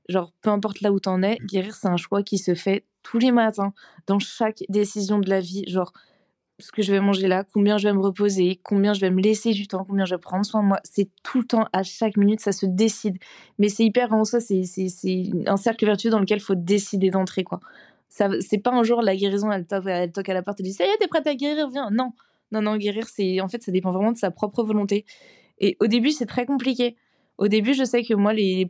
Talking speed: 265 wpm